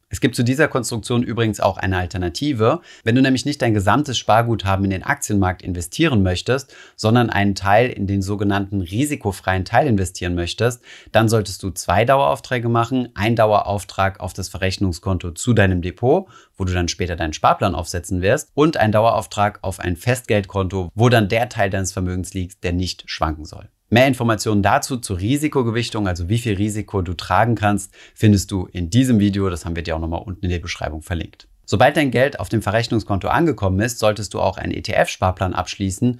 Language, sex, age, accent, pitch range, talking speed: German, male, 30-49, German, 95-115 Hz, 185 wpm